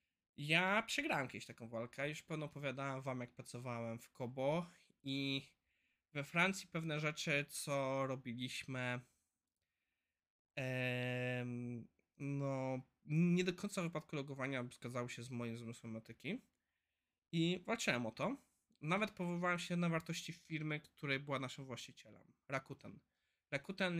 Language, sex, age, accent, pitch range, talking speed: Polish, male, 20-39, native, 120-165 Hz, 125 wpm